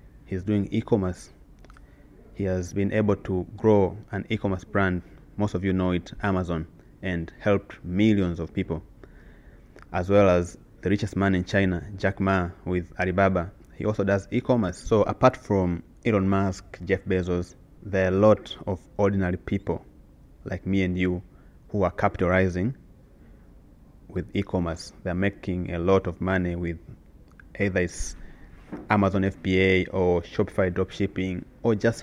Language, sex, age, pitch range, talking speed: English, male, 30-49, 90-105 Hz, 145 wpm